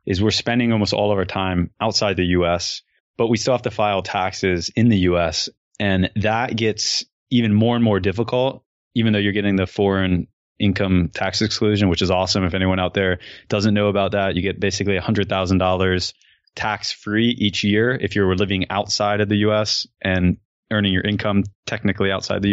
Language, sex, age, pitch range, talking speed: English, male, 20-39, 95-110 Hz, 185 wpm